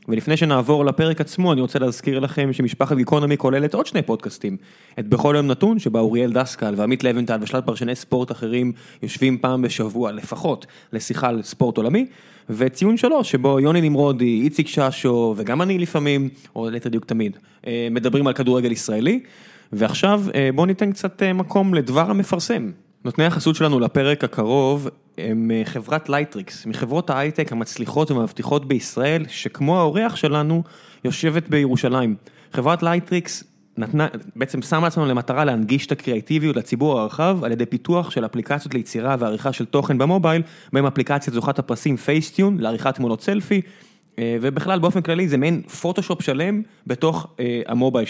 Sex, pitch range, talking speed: male, 120-165 Hz, 145 wpm